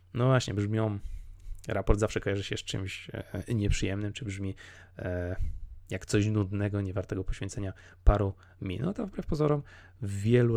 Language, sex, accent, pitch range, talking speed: Polish, male, native, 90-110 Hz, 135 wpm